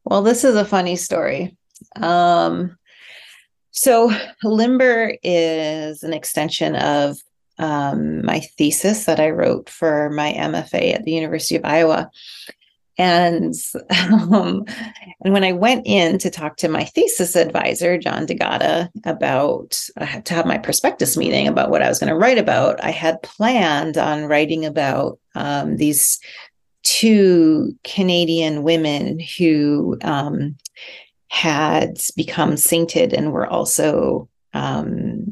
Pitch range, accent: 150-185 Hz, American